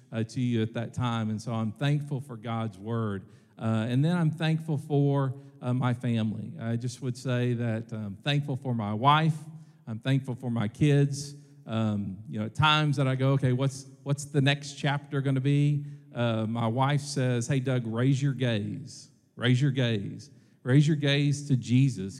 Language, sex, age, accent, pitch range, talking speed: English, male, 50-69, American, 115-140 Hz, 195 wpm